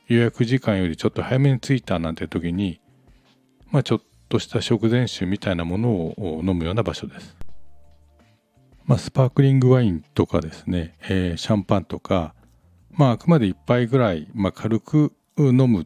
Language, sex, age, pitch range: Japanese, male, 50-69, 85-125 Hz